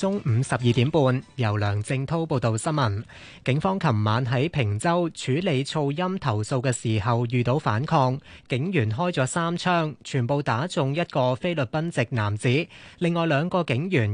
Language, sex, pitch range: Chinese, male, 120-165 Hz